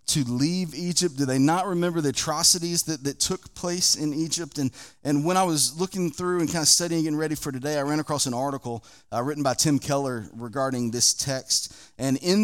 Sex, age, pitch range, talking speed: male, 30-49, 125-160 Hz, 220 wpm